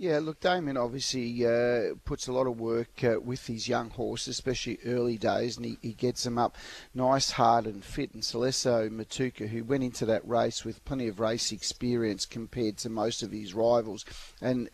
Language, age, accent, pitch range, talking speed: English, 40-59, Australian, 115-125 Hz, 195 wpm